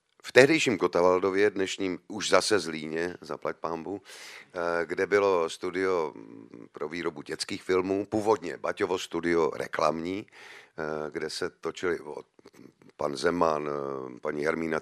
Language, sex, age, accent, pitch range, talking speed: Czech, male, 40-59, native, 85-125 Hz, 115 wpm